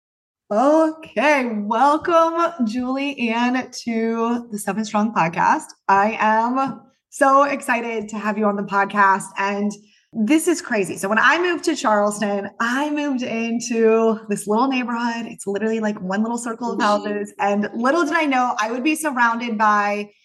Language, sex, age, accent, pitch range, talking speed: English, female, 20-39, American, 205-245 Hz, 155 wpm